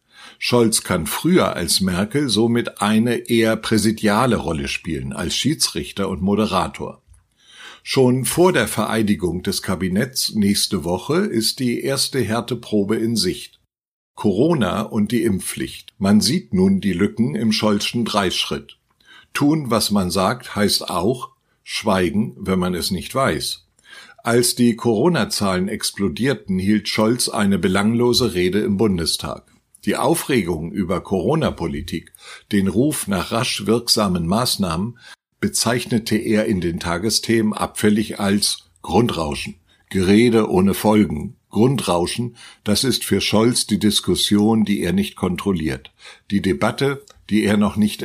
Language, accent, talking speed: German, German, 125 wpm